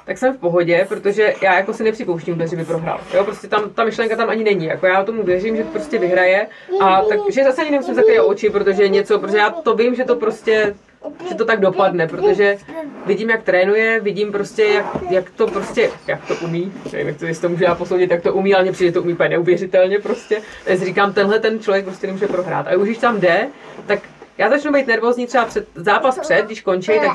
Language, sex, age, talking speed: Czech, female, 30-49, 220 wpm